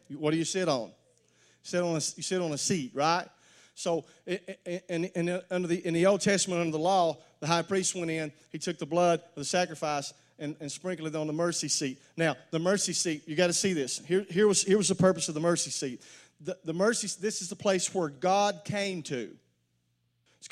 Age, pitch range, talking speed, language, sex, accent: 40-59, 155-210 Hz, 230 wpm, English, male, American